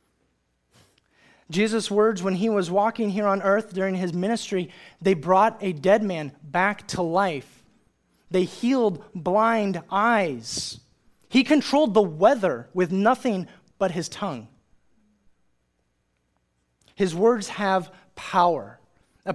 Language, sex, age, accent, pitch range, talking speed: English, male, 30-49, American, 175-225 Hz, 120 wpm